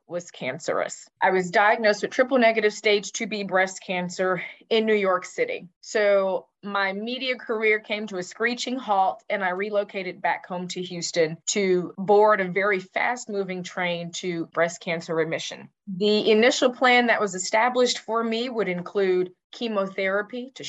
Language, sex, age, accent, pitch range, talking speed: English, female, 20-39, American, 180-230 Hz, 160 wpm